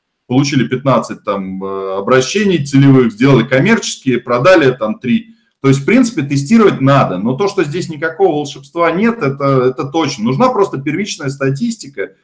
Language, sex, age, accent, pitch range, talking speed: Russian, male, 20-39, native, 130-180 Hz, 145 wpm